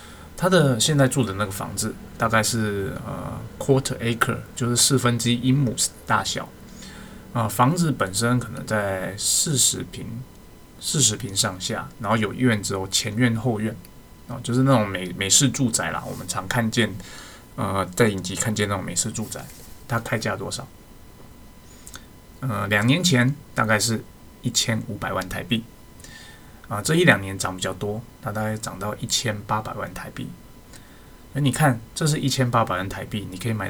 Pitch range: 100-125 Hz